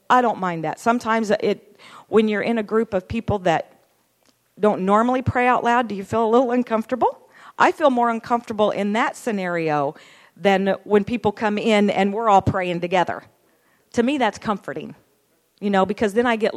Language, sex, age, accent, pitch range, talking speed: English, female, 50-69, American, 175-225 Hz, 190 wpm